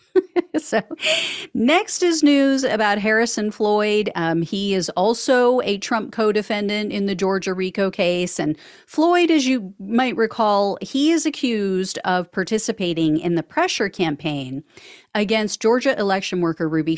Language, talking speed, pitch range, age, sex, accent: English, 140 wpm, 185-270 Hz, 40-59, female, American